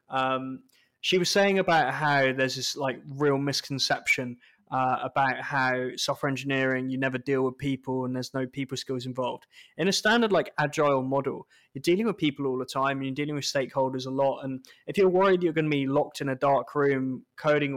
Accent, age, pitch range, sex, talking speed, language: British, 20-39, 130-150 Hz, male, 205 wpm, English